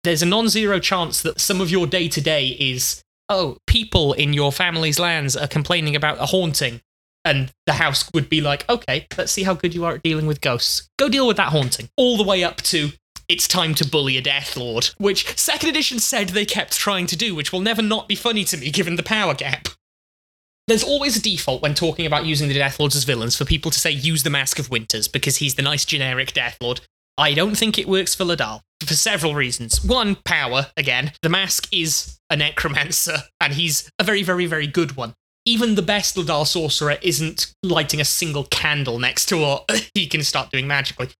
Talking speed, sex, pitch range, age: 215 wpm, male, 140-195 Hz, 20-39